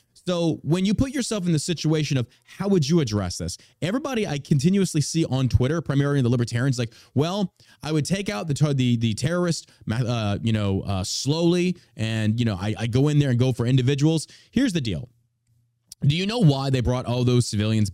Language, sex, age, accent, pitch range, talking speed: English, male, 30-49, American, 120-165 Hz, 205 wpm